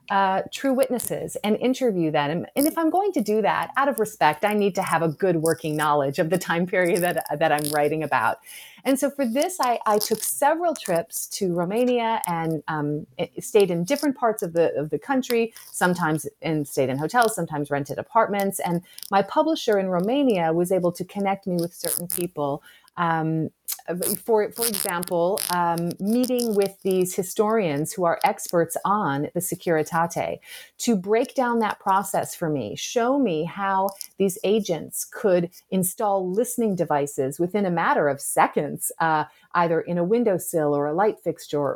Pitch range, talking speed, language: 165-220 Hz, 175 wpm, English